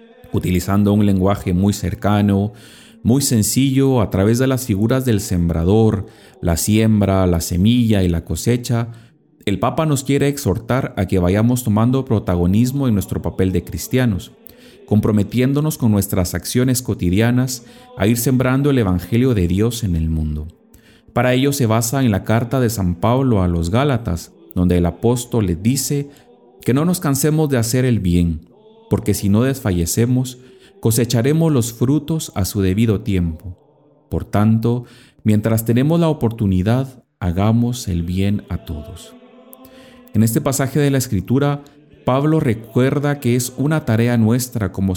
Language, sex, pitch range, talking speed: Spanish, male, 95-130 Hz, 150 wpm